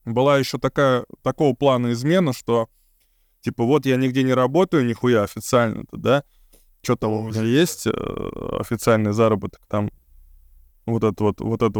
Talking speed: 140 wpm